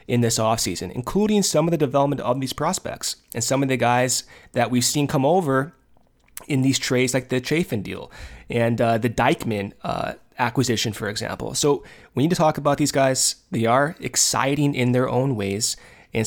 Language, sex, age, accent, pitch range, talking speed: English, male, 20-39, American, 115-145 Hz, 190 wpm